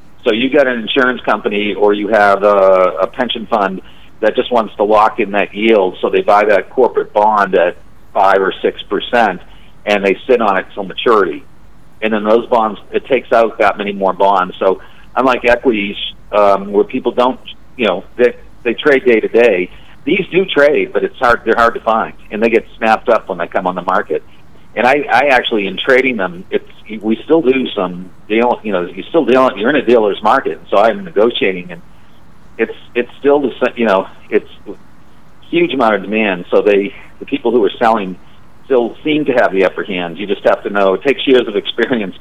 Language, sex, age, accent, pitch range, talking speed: English, male, 50-69, American, 95-135 Hz, 210 wpm